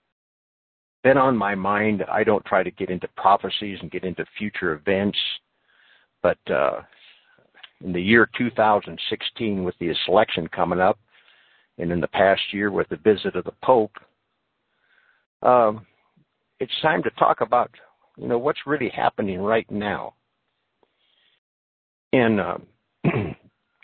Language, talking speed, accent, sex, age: English, 135 wpm, American, male, 60-79